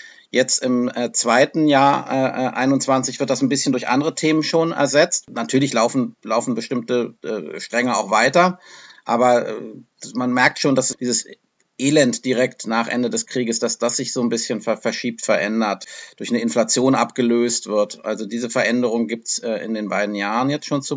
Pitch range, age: 115-135 Hz, 50-69